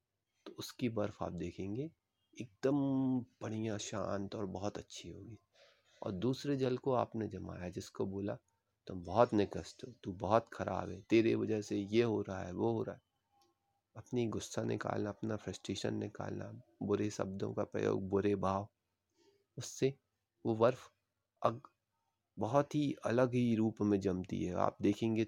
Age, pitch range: 30-49, 100-120 Hz